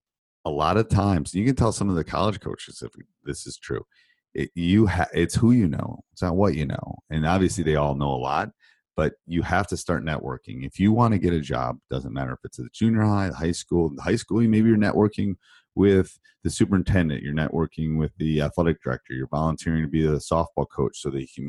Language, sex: English, male